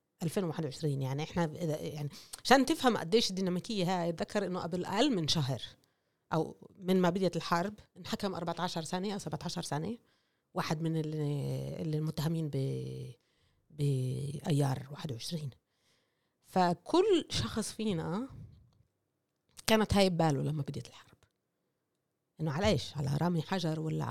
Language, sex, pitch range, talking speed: Arabic, female, 155-205 Hz, 125 wpm